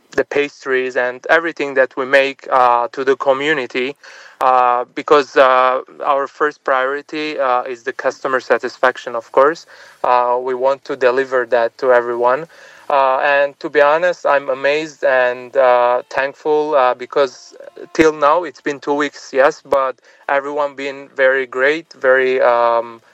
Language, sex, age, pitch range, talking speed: Arabic, male, 20-39, 125-140 Hz, 150 wpm